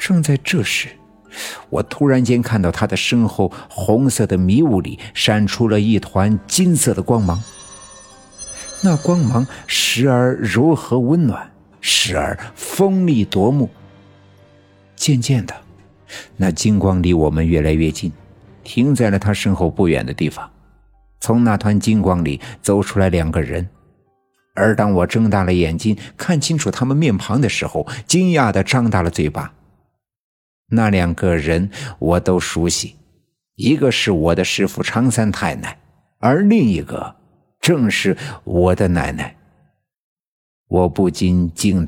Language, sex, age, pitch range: Chinese, male, 50-69, 95-125 Hz